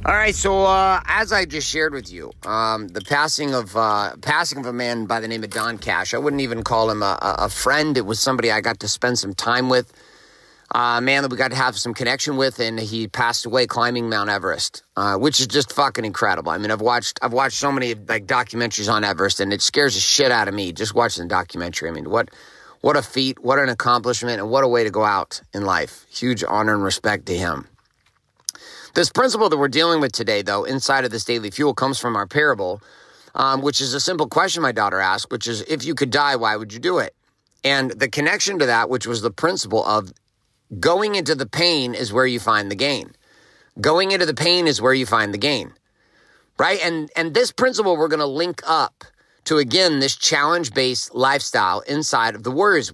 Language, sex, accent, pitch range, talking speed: English, male, American, 110-145 Hz, 230 wpm